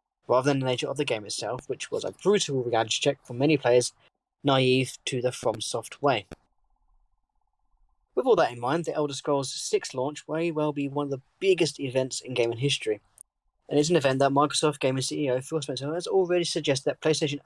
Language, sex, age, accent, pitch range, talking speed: English, male, 10-29, British, 130-170 Hz, 200 wpm